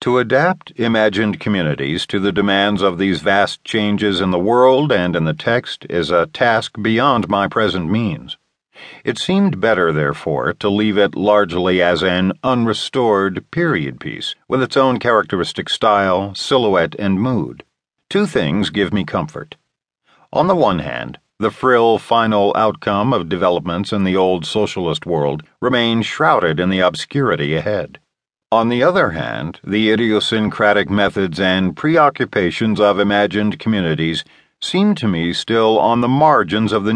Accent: American